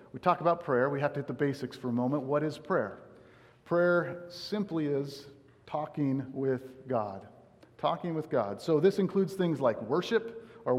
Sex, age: male, 50-69